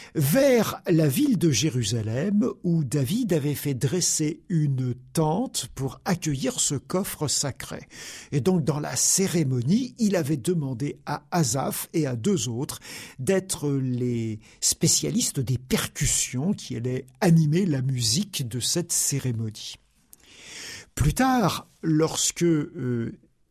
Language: French